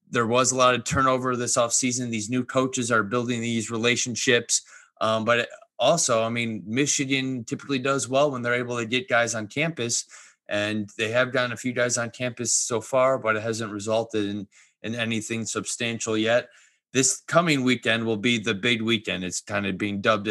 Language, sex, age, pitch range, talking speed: English, male, 20-39, 105-120 Hz, 190 wpm